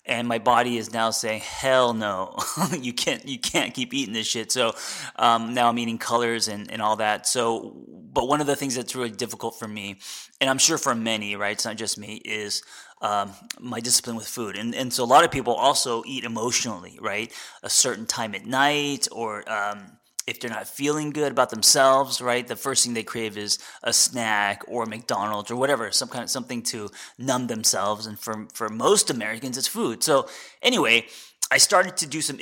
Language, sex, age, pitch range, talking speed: English, male, 20-39, 110-130 Hz, 210 wpm